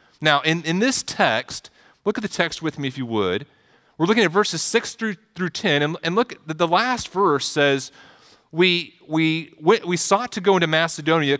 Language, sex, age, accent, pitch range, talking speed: English, male, 40-59, American, 140-175 Hz, 210 wpm